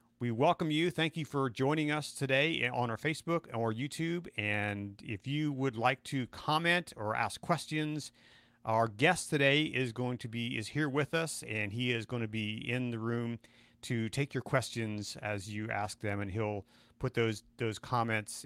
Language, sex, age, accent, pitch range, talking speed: English, male, 40-59, American, 110-140 Hz, 190 wpm